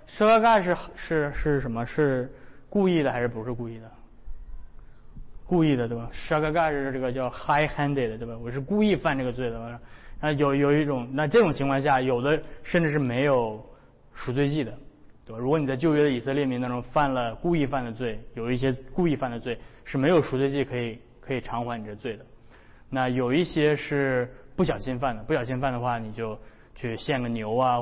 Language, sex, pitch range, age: Chinese, male, 120-145 Hz, 20-39